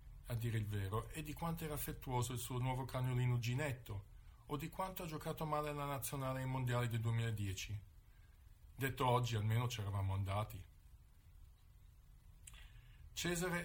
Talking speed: 150 wpm